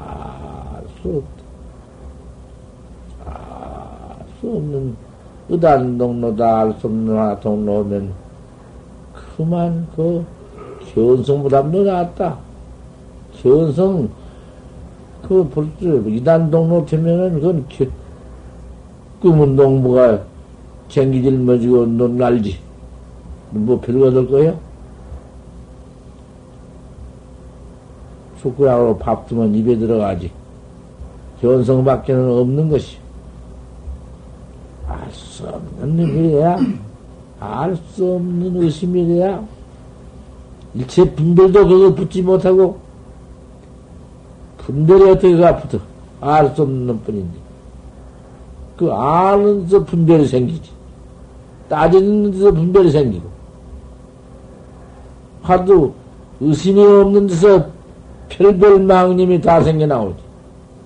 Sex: male